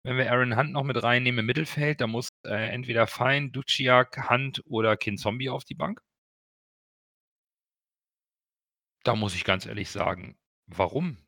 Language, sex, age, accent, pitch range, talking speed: German, male, 40-59, German, 110-155 Hz, 155 wpm